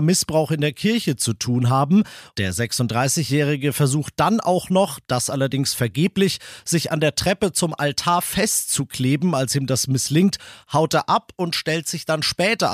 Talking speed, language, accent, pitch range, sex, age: 165 wpm, German, German, 130-180 Hz, male, 40-59